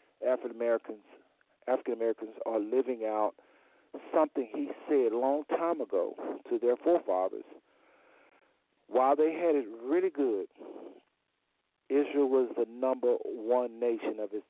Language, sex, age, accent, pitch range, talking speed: English, male, 50-69, American, 125-180 Hz, 130 wpm